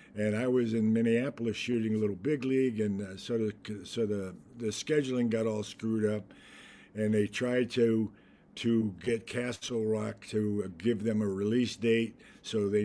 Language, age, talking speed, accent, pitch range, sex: English, 50-69, 170 wpm, American, 100-115 Hz, male